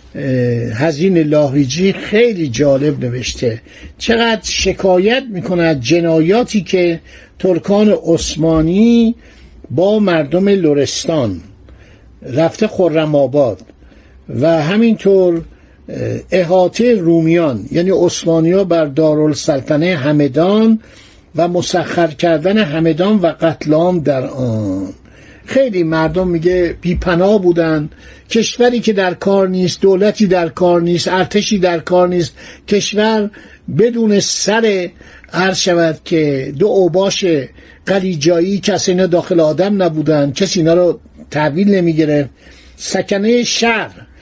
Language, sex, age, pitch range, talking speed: Persian, male, 60-79, 155-195 Hz, 100 wpm